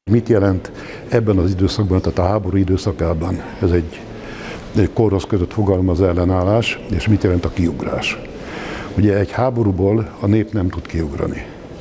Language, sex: Hungarian, male